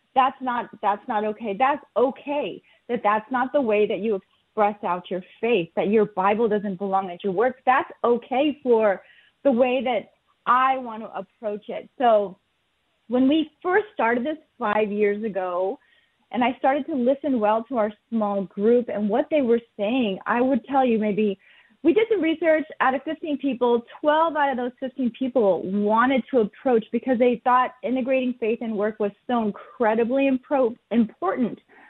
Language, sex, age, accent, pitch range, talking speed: English, female, 30-49, American, 215-275 Hz, 180 wpm